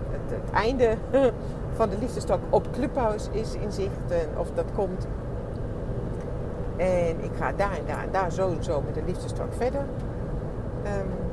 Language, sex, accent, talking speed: English, female, Dutch, 165 wpm